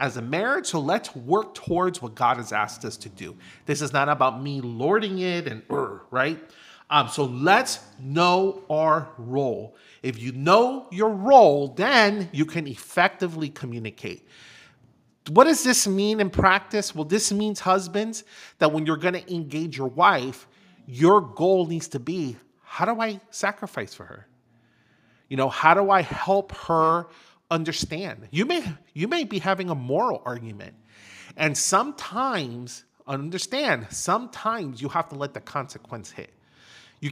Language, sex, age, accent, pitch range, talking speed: English, male, 40-59, American, 135-185 Hz, 160 wpm